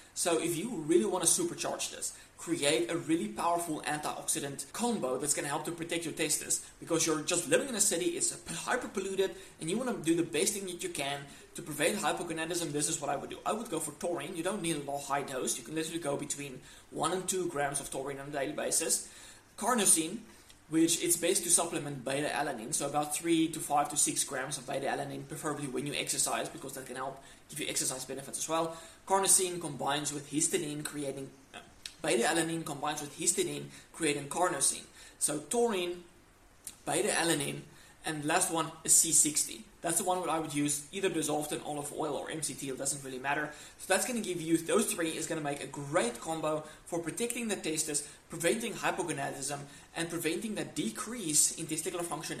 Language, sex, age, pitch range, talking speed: English, male, 20-39, 145-180 Hz, 200 wpm